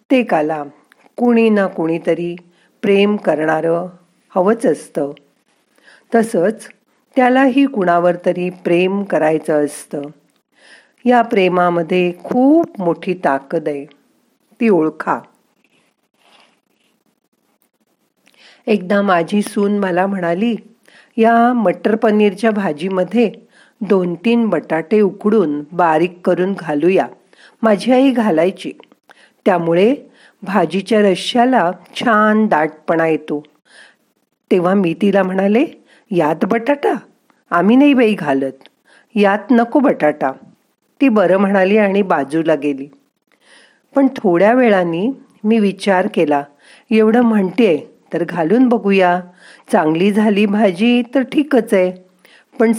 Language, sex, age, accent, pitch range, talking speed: Marathi, female, 50-69, native, 175-230 Hz, 95 wpm